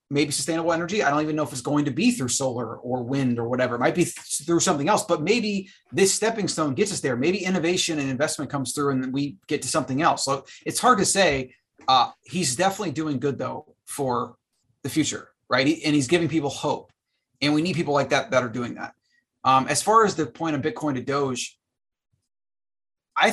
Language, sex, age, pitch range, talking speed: Persian, male, 30-49, 135-170 Hz, 220 wpm